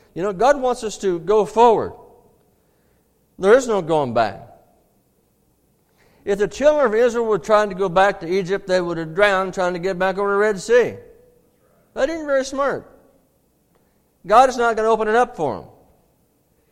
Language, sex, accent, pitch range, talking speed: English, male, American, 145-220 Hz, 185 wpm